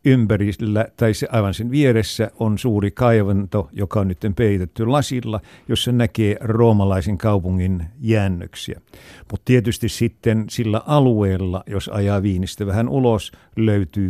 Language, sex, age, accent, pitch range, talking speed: Finnish, male, 60-79, native, 100-120 Hz, 125 wpm